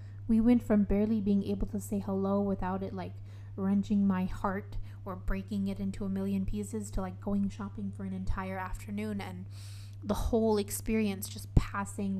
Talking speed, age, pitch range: 175 wpm, 20-39, 100-105 Hz